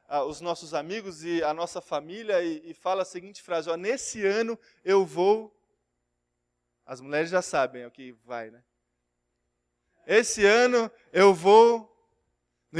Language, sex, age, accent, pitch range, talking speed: Portuguese, male, 20-39, Brazilian, 170-250 Hz, 140 wpm